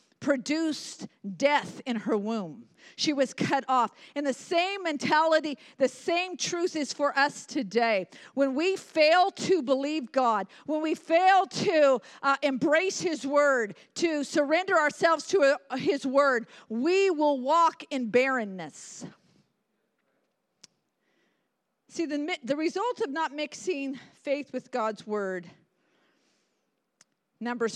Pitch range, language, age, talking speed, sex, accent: 240-315 Hz, English, 50-69, 125 wpm, female, American